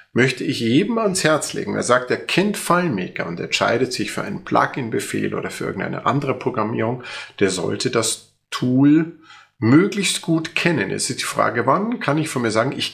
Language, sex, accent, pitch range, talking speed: German, male, German, 125-160 Hz, 185 wpm